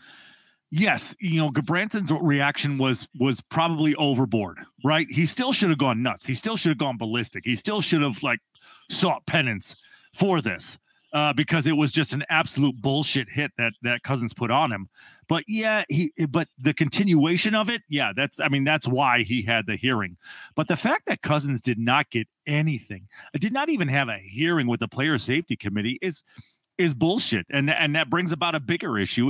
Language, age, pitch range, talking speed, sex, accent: English, 40-59, 130-170 Hz, 195 wpm, male, American